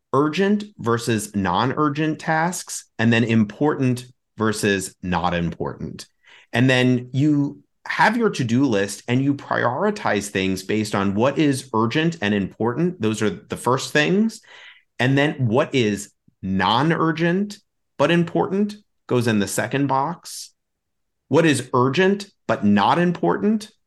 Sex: male